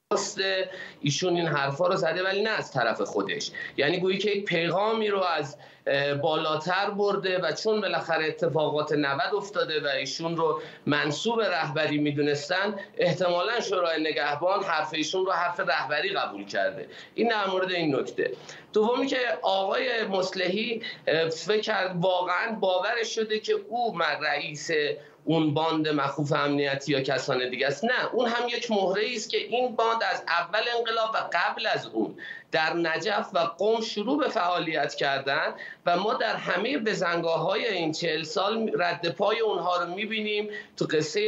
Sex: male